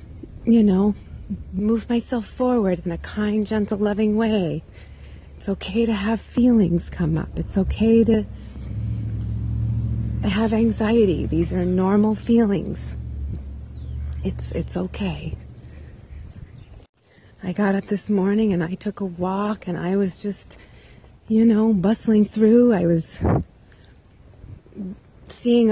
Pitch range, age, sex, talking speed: 170-220 Hz, 30-49, female, 120 wpm